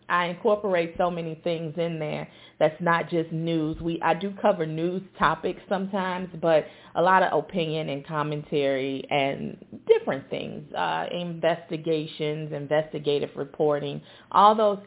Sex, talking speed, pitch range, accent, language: female, 135 wpm, 150-185 Hz, American, English